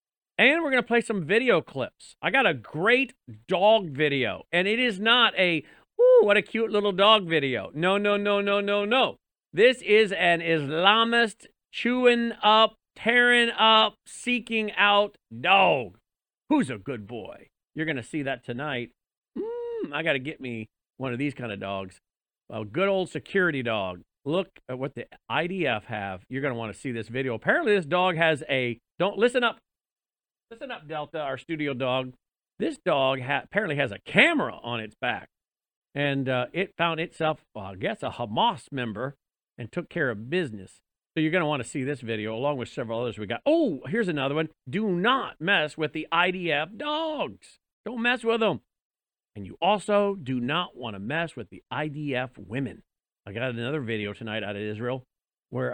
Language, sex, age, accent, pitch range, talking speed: English, male, 40-59, American, 125-205 Hz, 185 wpm